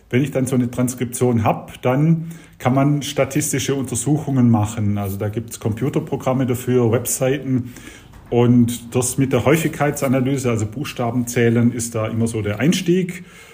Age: 40-59